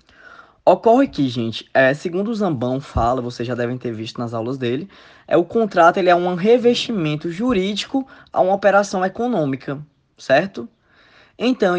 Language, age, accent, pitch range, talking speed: Portuguese, 10-29, Brazilian, 140-220 Hz, 135 wpm